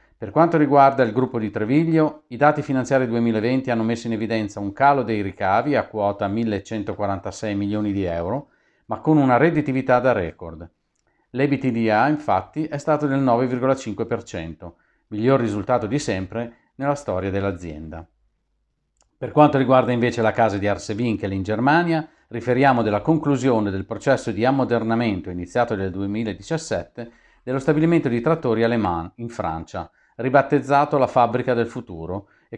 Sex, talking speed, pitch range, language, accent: male, 140 wpm, 100-135 Hz, Italian, native